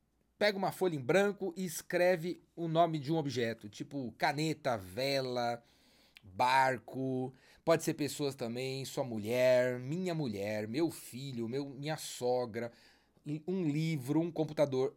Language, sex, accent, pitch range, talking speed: Portuguese, male, Brazilian, 145-185 Hz, 130 wpm